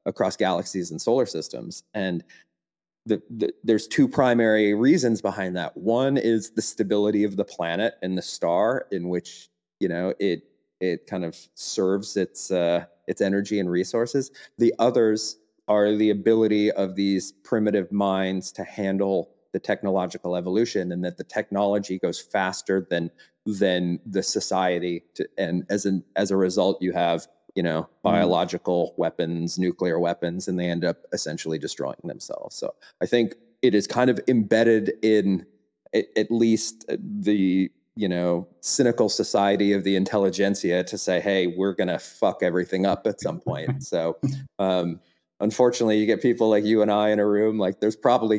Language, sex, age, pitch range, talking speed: English, male, 30-49, 90-110 Hz, 165 wpm